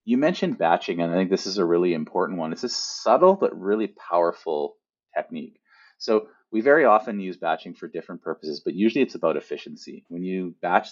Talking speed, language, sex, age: 200 wpm, English, male, 30-49